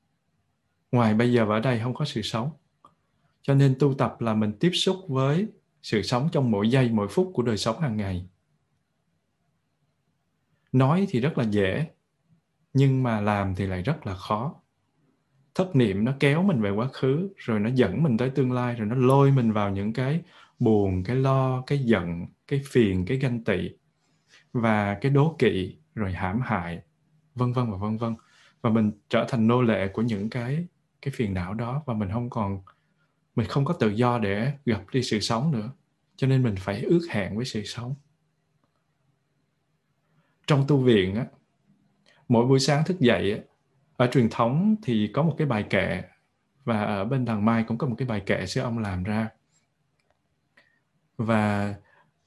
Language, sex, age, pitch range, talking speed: Vietnamese, male, 20-39, 110-145 Hz, 185 wpm